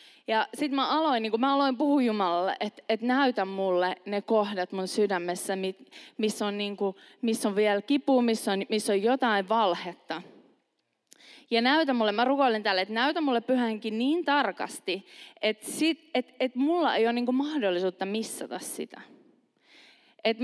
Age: 20-39